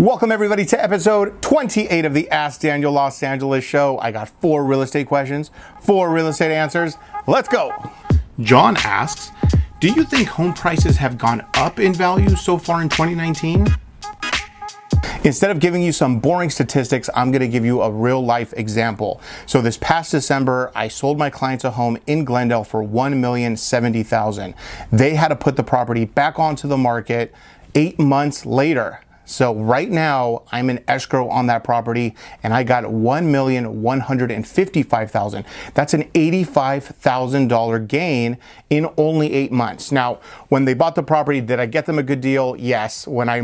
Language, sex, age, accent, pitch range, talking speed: English, male, 30-49, American, 120-160 Hz, 180 wpm